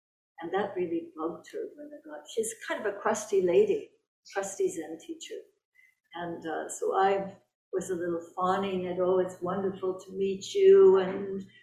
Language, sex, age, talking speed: English, female, 60-79, 170 wpm